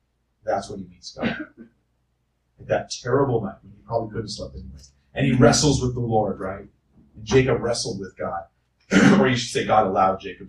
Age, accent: 30-49, American